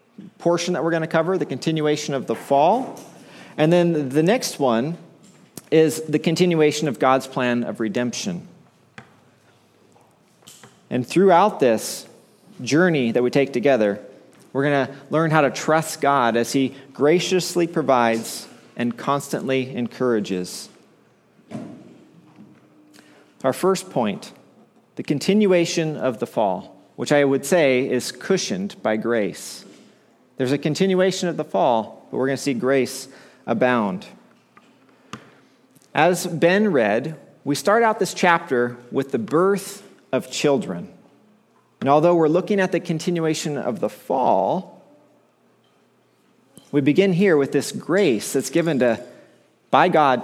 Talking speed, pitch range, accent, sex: 130 wpm, 130-180 Hz, American, male